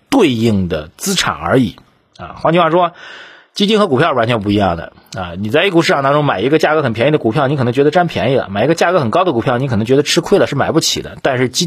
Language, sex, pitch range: Chinese, male, 110-170 Hz